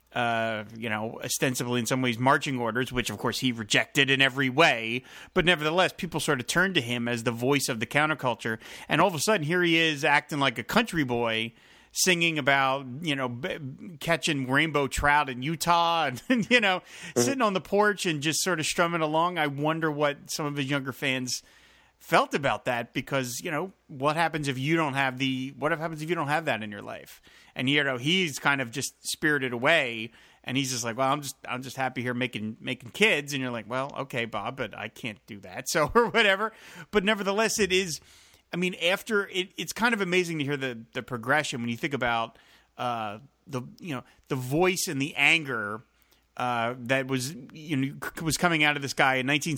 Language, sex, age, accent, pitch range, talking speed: English, male, 30-49, American, 125-165 Hz, 215 wpm